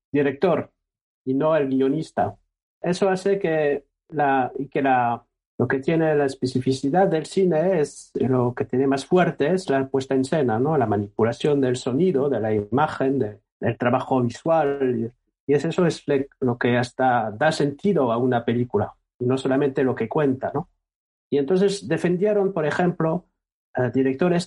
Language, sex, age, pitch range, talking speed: Spanish, male, 50-69, 125-155 Hz, 165 wpm